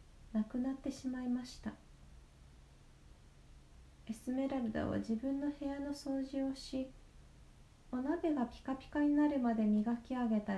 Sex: female